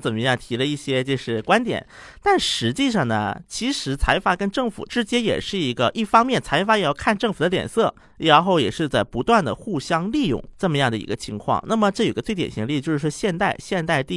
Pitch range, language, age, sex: 135-220 Hz, Chinese, 50-69, male